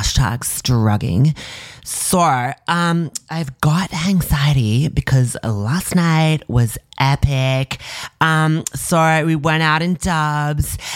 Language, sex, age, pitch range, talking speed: English, male, 20-39, 120-160 Hz, 105 wpm